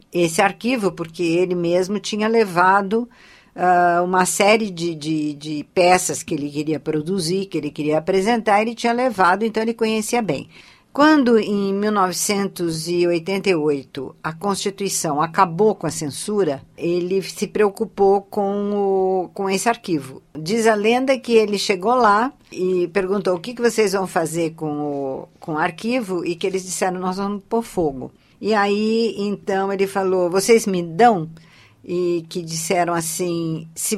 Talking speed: 150 wpm